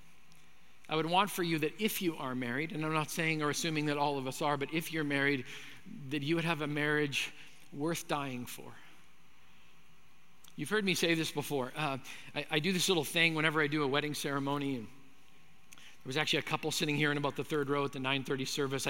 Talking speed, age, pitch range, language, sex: 215 wpm, 50-69, 140-160 Hz, English, male